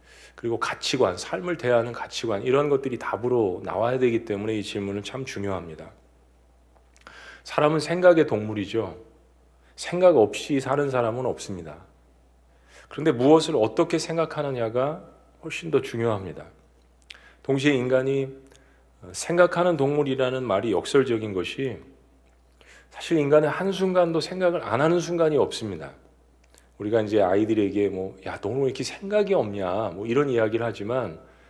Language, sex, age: Korean, male, 40-59